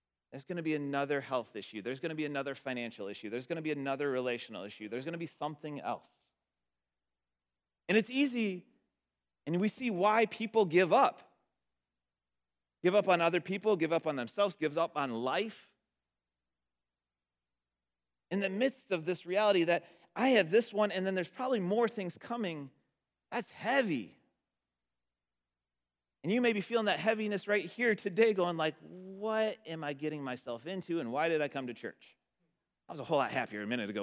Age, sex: 30-49, male